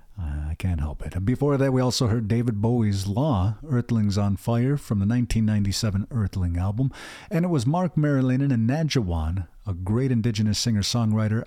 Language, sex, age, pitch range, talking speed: English, male, 50-69, 100-135 Hz, 170 wpm